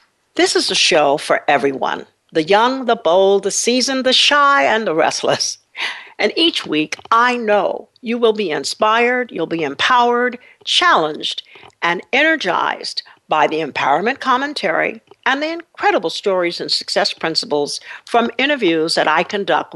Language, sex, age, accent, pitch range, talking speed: English, female, 60-79, American, 180-285 Hz, 145 wpm